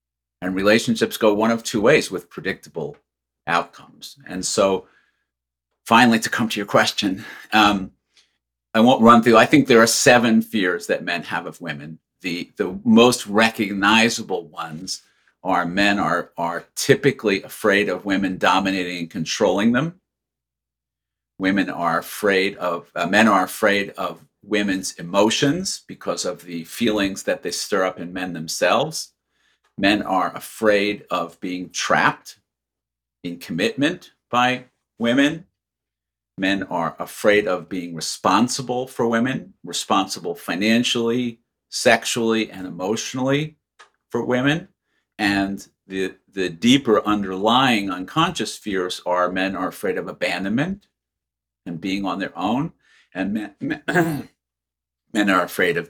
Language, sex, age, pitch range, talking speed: English, male, 50-69, 85-115 Hz, 130 wpm